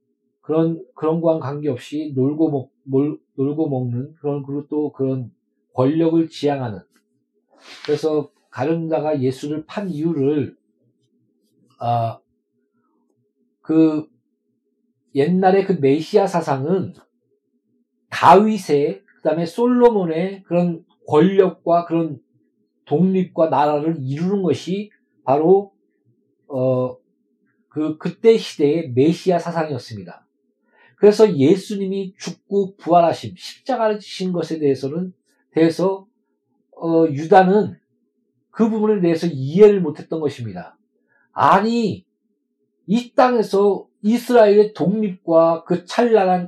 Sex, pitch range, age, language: male, 150-200 Hz, 40-59, Korean